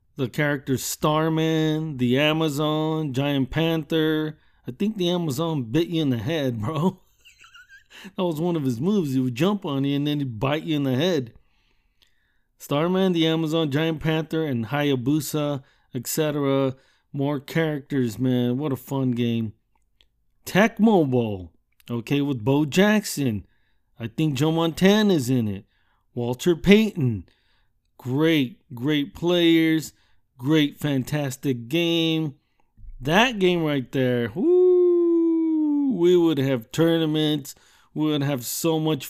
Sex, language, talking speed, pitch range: male, English, 130 wpm, 125-160 Hz